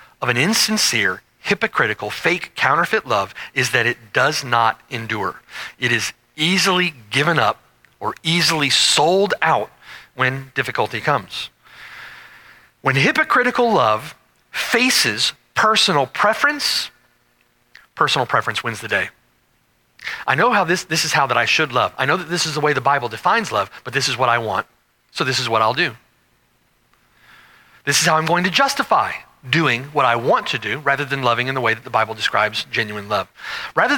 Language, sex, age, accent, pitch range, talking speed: English, male, 40-59, American, 115-165 Hz, 170 wpm